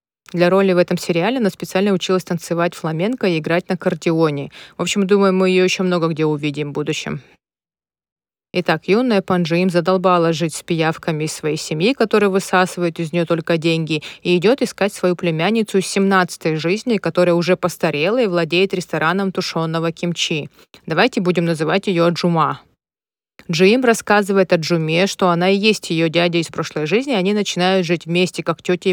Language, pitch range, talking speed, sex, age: Russian, 170-195 Hz, 170 wpm, female, 30-49